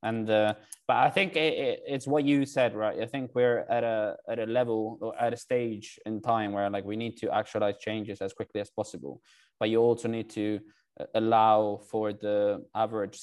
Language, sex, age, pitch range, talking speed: English, male, 20-39, 105-115 Hz, 210 wpm